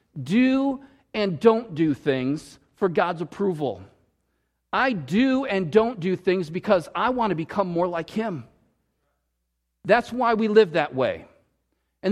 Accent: American